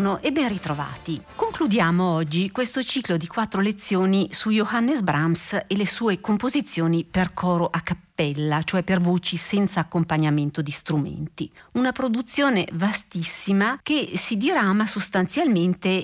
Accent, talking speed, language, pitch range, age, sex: native, 130 wpm, Italian, 165-210 Hz, 50-69, female